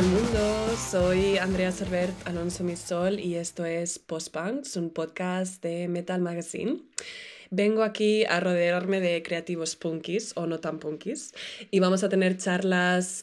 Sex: female